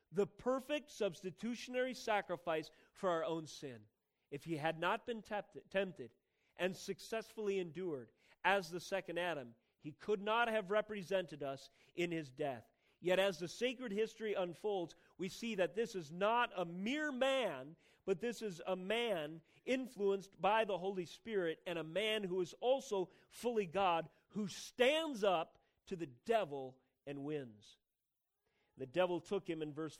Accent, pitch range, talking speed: American, 160-210 Hz, 155 wpm